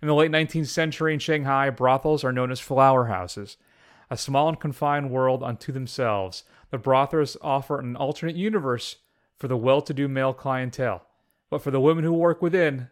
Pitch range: 130-150 Hz